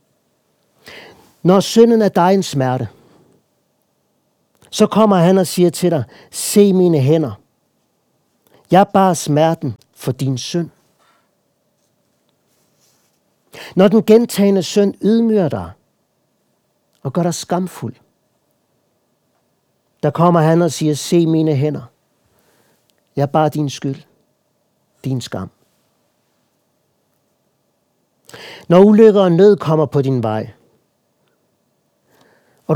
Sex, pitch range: male, 135-180 Hz